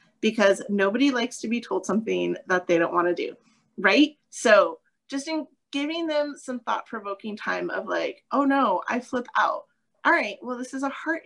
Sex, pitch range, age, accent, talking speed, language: female, 220-295 Hz, 30-49, American, 190 wpm, English